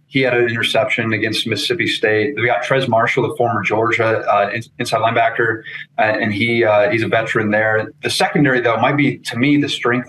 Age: 30-49